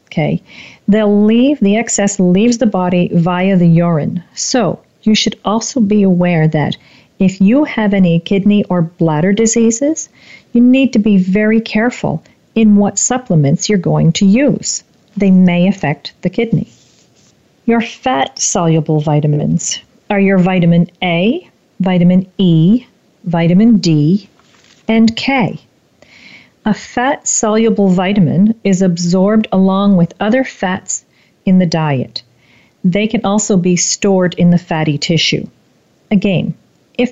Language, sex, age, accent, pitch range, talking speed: English, female, 40-59, American, 180-225 Hz, 130 wpm